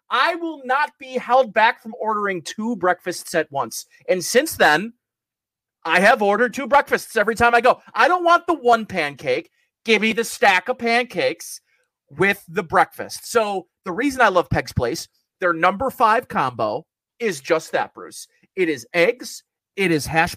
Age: 30-49